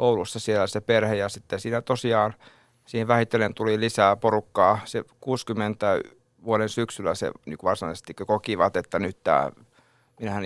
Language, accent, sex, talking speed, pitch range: Finnish, native, male, 145 wpm, 105-120 Hz